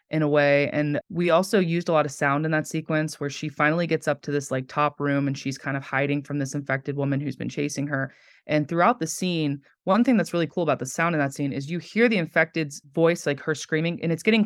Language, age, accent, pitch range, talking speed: English, 20-39, American, 140-160 Hz, 265 wpm